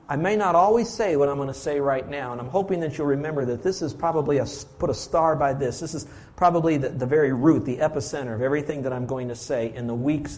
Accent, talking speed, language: American, 265 wpm, English